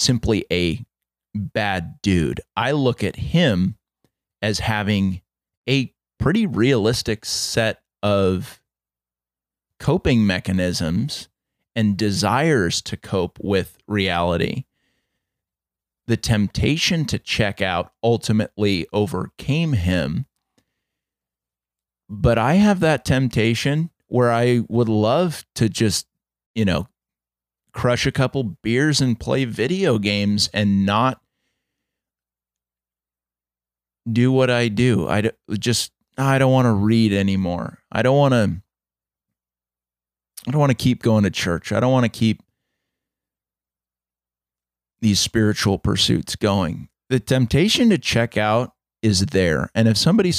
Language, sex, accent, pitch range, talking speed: English, male, American, 85-125 Hz, 115 wpm